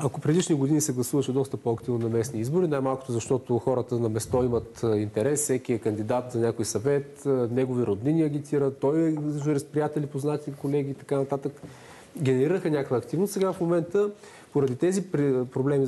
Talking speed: 165 wpm